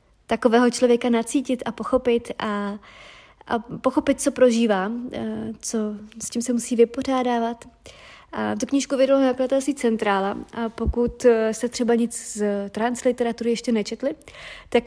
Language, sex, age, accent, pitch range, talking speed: Czech, female, 30-49, native, 220-245 Hz, 135 wpm